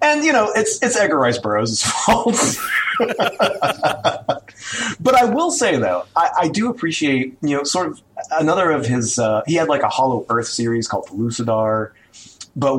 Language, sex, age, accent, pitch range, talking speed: English, male, 30-49, American, 110-140 Hz, 170 wpm